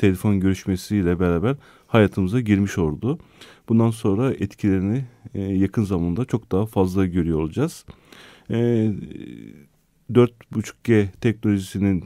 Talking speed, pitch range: 90 wpm, 95-120 Hz